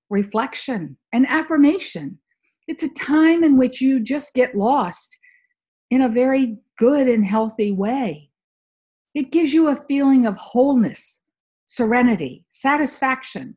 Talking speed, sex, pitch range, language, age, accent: 125 wpm, female, 205-290 Hz, English, 50-69, American